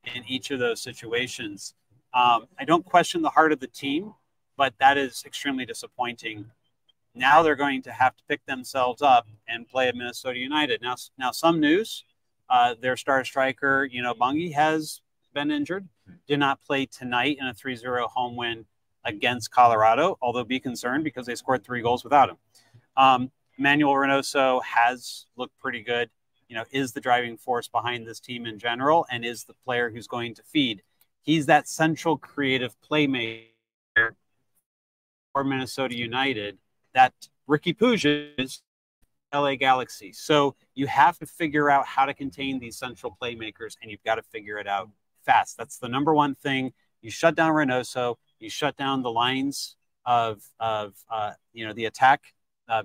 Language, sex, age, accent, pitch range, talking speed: English, male, 30-49, American, 120-145 Hz, 170 wpm